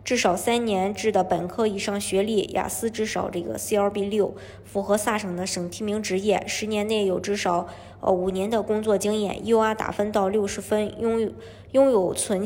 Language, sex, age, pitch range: Chinese, male, 20-39, 190-225 Hz